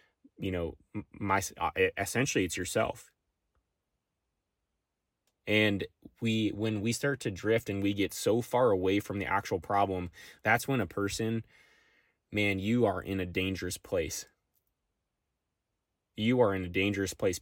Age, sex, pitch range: 20-39, male, 95-115 Hz